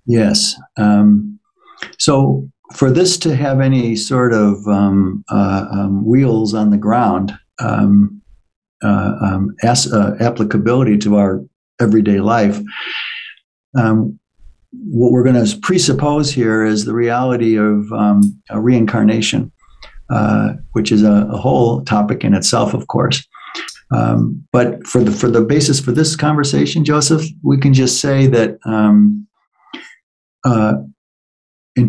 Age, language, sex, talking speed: 60-79, English, male, 135 wpm